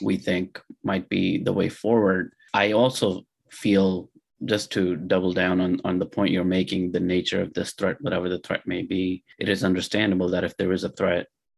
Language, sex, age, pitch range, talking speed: English, male, 30-49, 95-105 Hz, 200 wpm